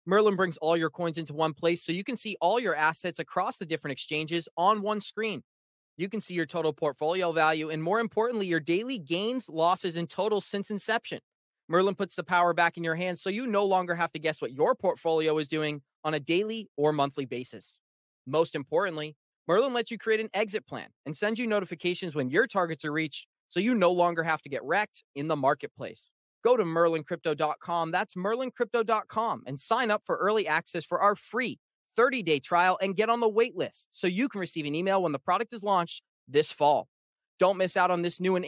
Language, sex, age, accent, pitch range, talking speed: English, male, 30-49, American, 165-210 Hz, 215 wpm